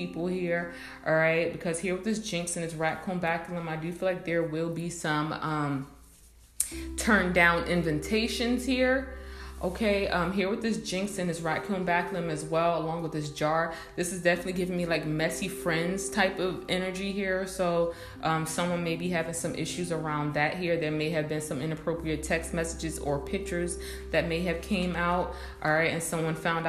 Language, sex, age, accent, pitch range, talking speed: English, female, 20-39, American, 155-185 Hz, 195 wpm